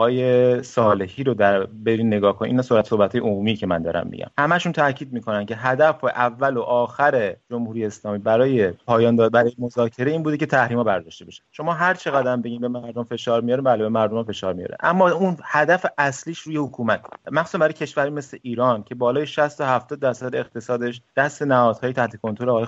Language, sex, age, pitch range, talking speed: Persian, male, 30-49, 115-140 Hz, 200 wpm